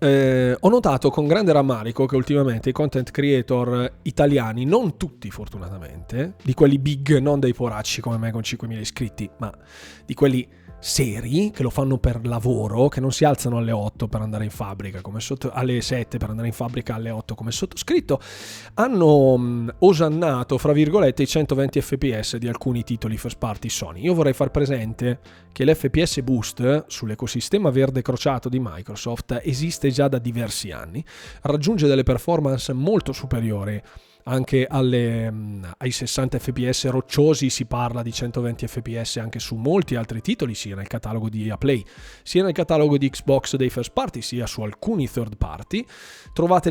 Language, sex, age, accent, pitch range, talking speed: Italian, male, 20-39, native, 115-140 Hz, 160 wpm